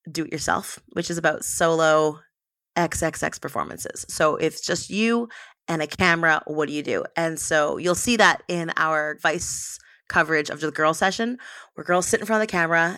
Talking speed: 190 wpm